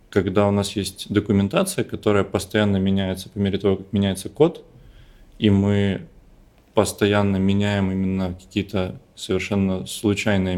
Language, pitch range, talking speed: Russian, 95-110 Hz, 125 wpm